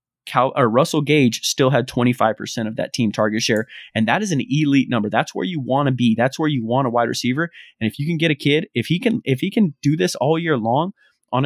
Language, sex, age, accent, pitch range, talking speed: English, male, 20-39, American, 120-150 Hz, 240 wpm